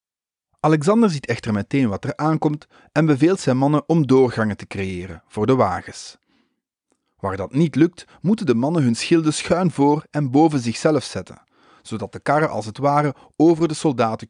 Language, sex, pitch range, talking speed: English, male, 110-160 Hz, 175 wpm